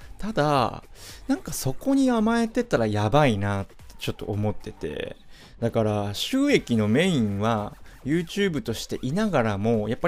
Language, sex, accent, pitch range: Japanese, male, native, 105-150 Hz